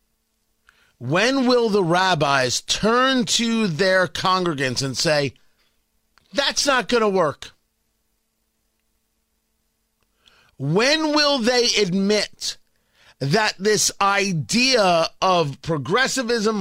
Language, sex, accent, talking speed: English, male, American, 85 wpm